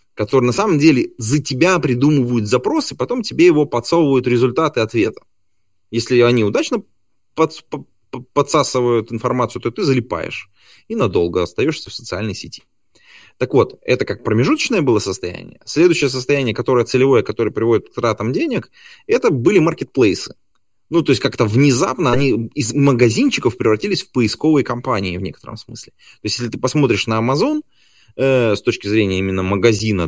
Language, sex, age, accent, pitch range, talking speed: Russian, male, 20-39, native, 100-135 Hz, 150 wpm